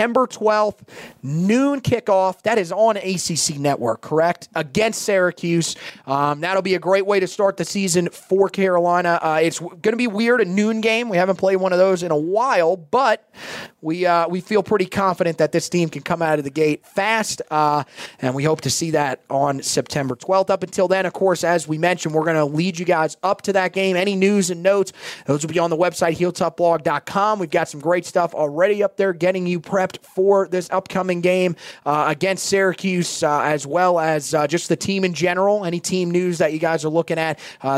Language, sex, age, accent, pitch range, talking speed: English, male, 30-49, American, 155-190 Hz, 220 wpm